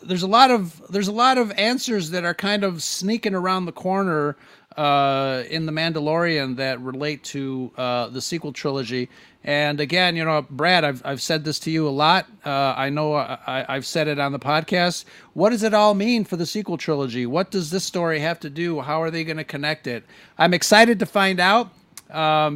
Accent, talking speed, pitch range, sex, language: American, 215 wpm, 145-175 Hz, male, English